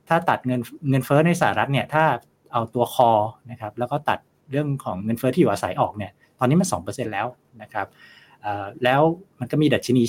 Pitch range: 105-140 Hz